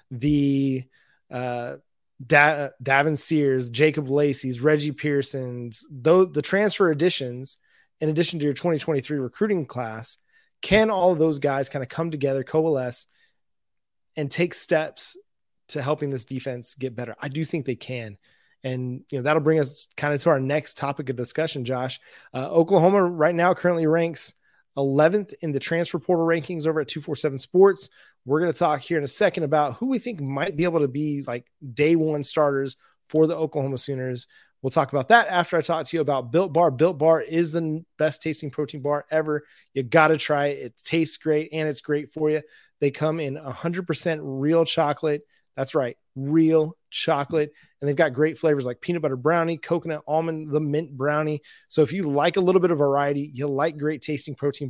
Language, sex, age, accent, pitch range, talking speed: English, male, 20-39, American, 140-165 Hz, 190 wpm